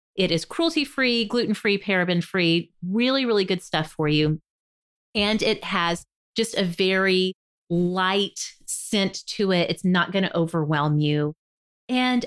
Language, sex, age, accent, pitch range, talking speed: English, female, 30-49, American, 175-240 Hz, 135 wpm